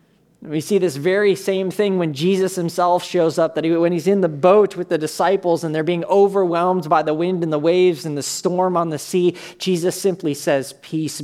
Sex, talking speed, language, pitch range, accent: male, 215 wpm, English, 145-190 Hz, American